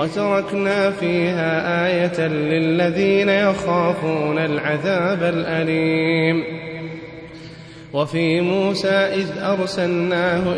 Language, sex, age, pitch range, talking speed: Arabic, male, 30-49, 160-180 Hz, 60 wpm